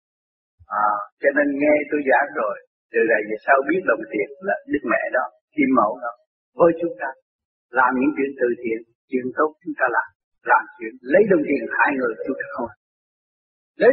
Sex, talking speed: male, 185 wpm